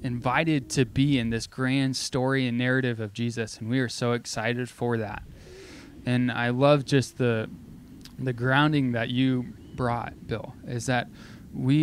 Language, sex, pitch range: English, male, 120-135 Hz